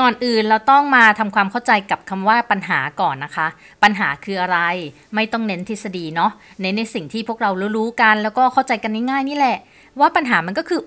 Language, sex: Thai, female